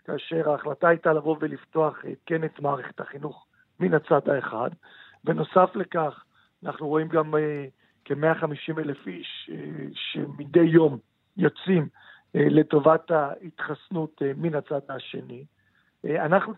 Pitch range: 145-175 Hz